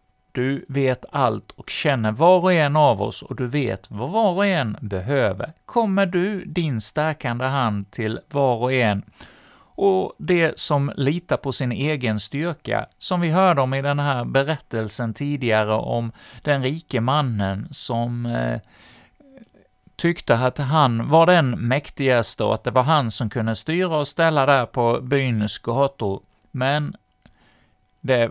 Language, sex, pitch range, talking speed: Swedish, male, 115-155 Hz, 155 wpm